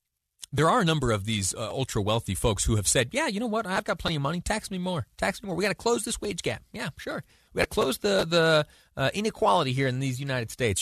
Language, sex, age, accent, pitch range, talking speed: English, male, 30-49, American, 110-180 Hz, 270 wpm